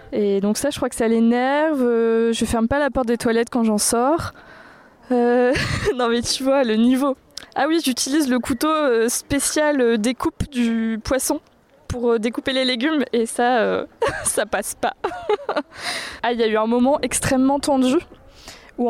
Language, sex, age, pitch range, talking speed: French, female, 20-39, 220-275 Hz, 170 wpm